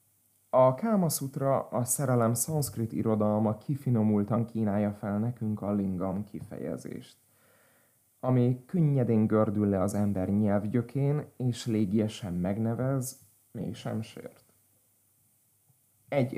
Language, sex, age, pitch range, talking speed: Hungarian, male, 30-49, 105-125 Hz, 100 wpm